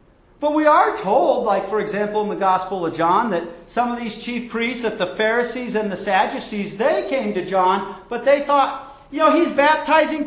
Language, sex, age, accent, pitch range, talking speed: English, male, 50-69, American, 175-265 Hz, 205 wpm